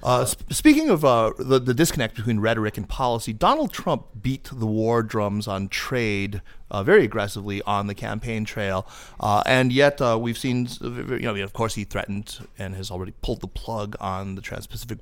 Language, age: English, 30-49